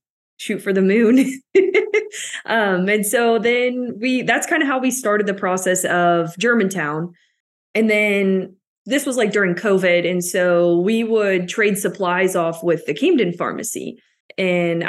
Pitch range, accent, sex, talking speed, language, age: 175-215 Hz, American, female, 155 wpm, English, 20-39